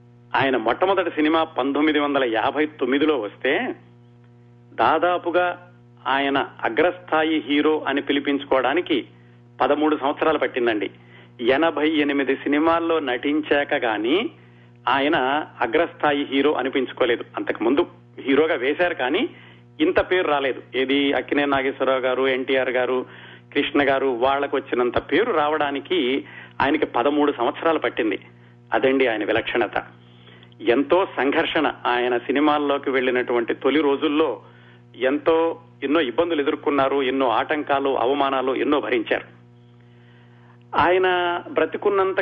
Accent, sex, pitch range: native, male, 120-155 Hz